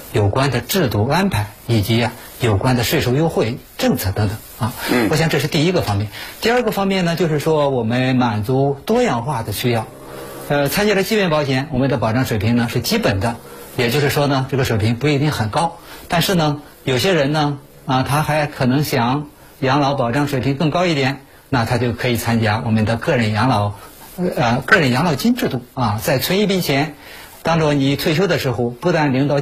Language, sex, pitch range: Chinese, male, 115-150 Hz